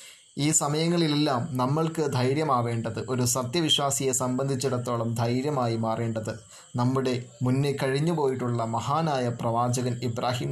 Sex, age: male, 20-39